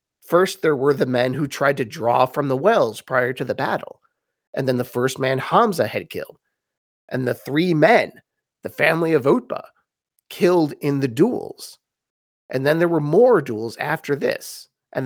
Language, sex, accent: English, male, American